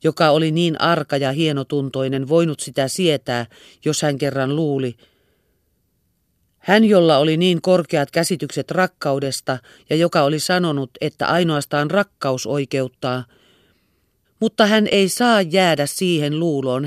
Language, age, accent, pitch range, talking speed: Finnish, 40-59, native, 135-175 Hz, 125 wpm